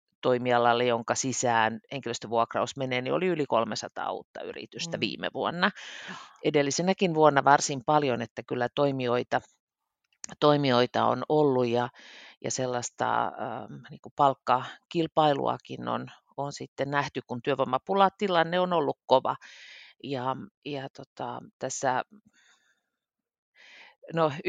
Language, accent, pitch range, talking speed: Finnish, native, 125-150 Hz, 110 wpm